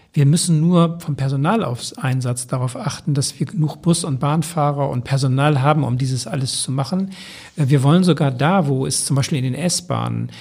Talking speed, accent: 195 wpm, German